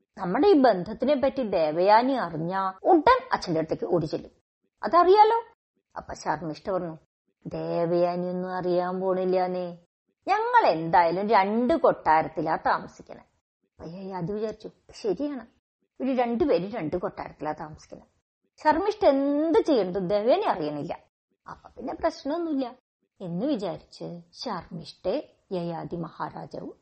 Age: 30-49